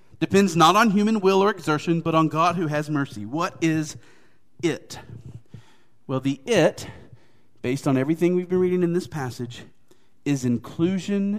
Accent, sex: American, male